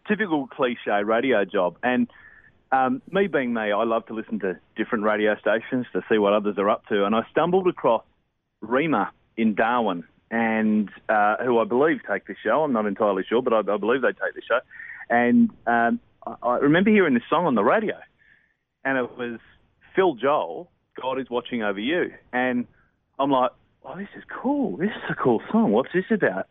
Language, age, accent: English, 30-49, Australian